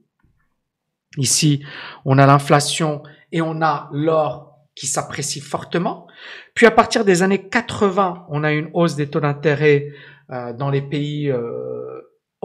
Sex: male